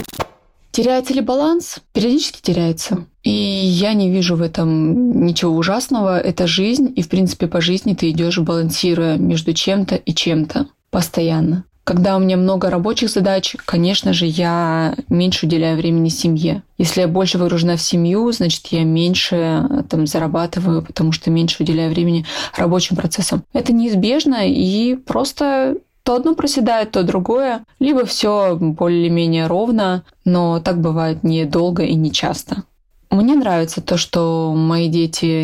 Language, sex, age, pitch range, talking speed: Russian, female, 20-39, 165-200 Hz, 145 wpm